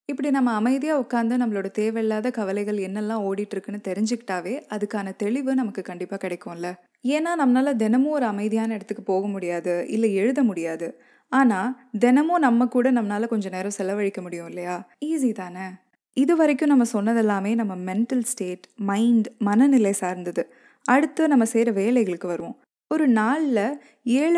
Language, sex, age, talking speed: Tamil, female, 20-39, 140 wpm